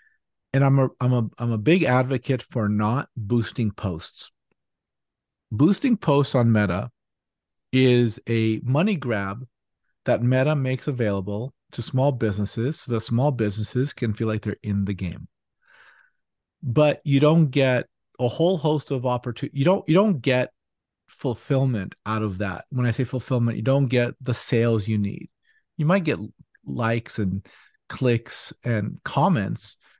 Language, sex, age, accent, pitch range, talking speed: English, male, 40-59, American, 110-135 Hz, 150 wpm